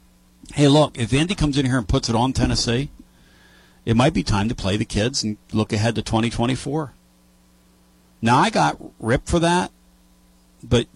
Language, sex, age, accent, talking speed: English, male, 50-69, American, 175 wpm